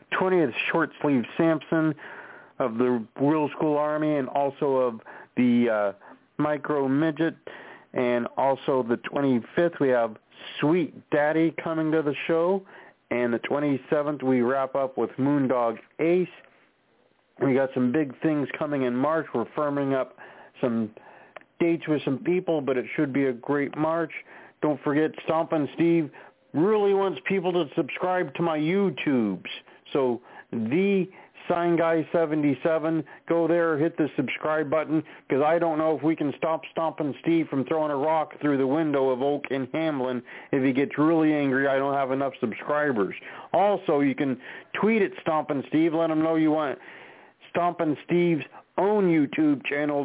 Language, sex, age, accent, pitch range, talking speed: English, male, 40-59, American, 135-165 Hz, 160 wpm